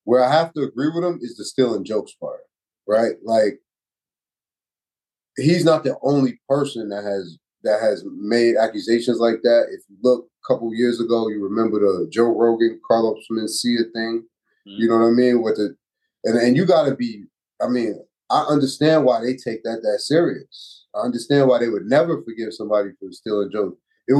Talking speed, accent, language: 195 wpm, American, English